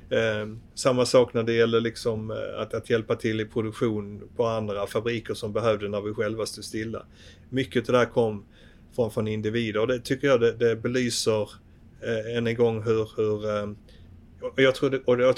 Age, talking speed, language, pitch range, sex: 30-49, 185 wpm, Swedish, 105-120 Hz, male